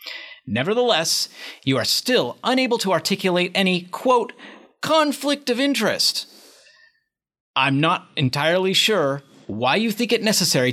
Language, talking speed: English, 115 wpm